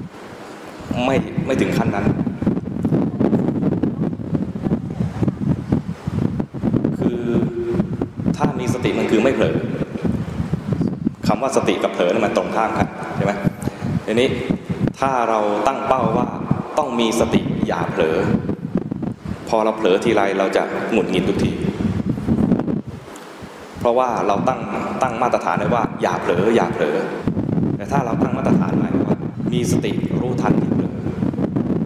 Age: 20-39